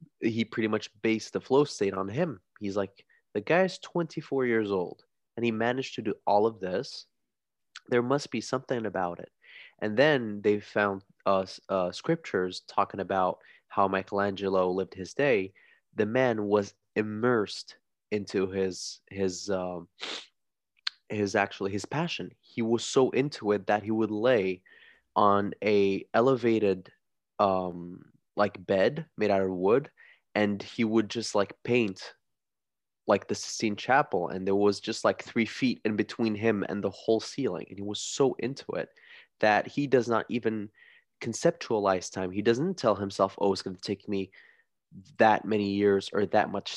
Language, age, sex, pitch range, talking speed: English, 20-39, male, 100-115 Hz, 165 wpm